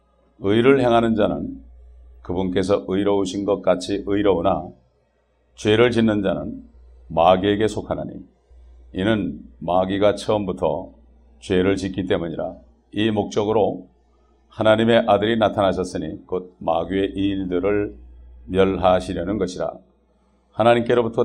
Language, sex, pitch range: English, male, 70-105 Hz